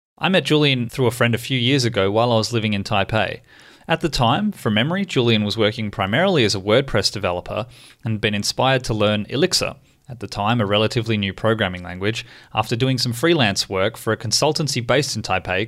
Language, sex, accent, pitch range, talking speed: English, male, Australian, 105-130 Hz, 205 wpm